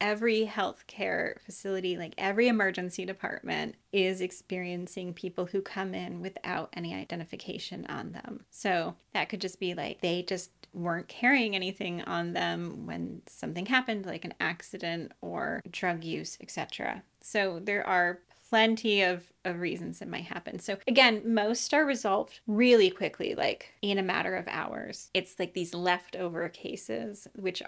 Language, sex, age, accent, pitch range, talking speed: English, female, 20-39, American, 180-215 Hz, 150 wpm